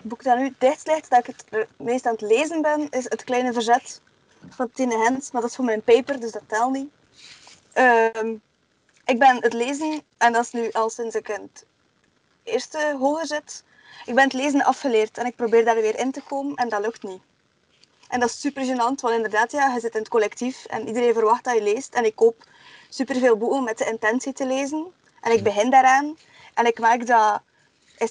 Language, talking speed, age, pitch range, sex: Dutch, 220 wpm, 20-39, 225-260 Hz, female